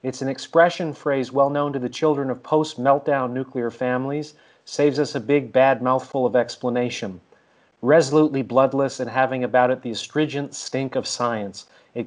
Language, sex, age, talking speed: English, male, 40-59, 160 wpm